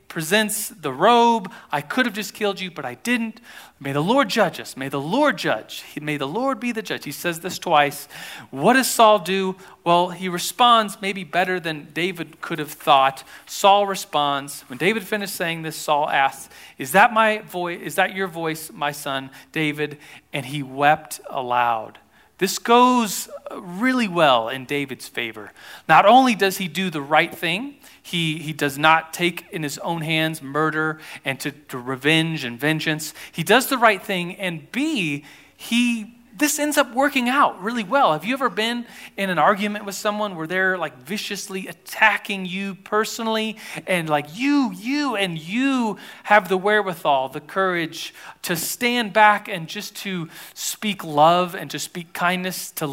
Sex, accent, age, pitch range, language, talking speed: male, American, 40-59, 155-215 Hz, English, 170 wpm